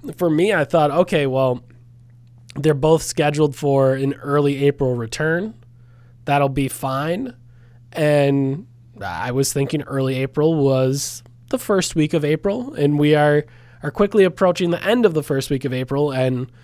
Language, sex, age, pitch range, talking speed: English, male, 20-39, 125-155 Hz, 160 wpm